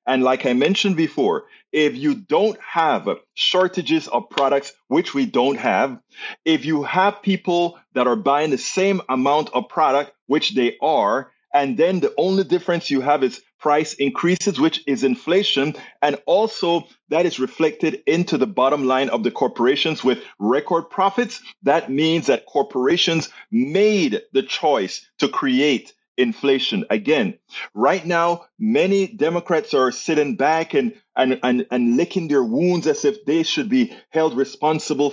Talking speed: 155 wpm